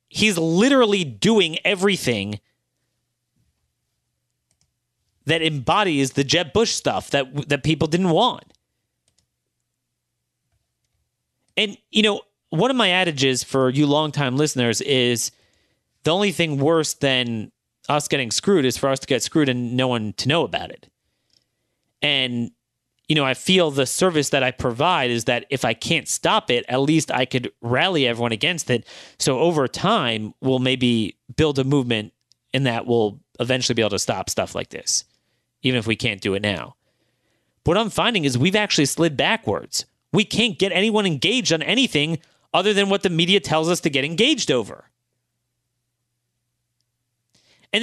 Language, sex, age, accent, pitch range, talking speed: English, male, 30-49, American, 120-170 Hz, 160 wpm